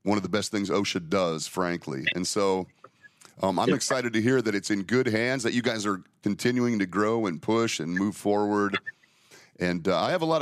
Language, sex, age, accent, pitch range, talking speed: English, male, 40-59, American, 100-125 Hz, 220 wpm